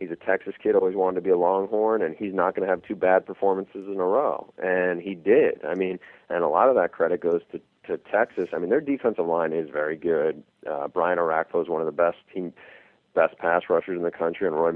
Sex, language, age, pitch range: male, English, 40-59, 85-125 Hz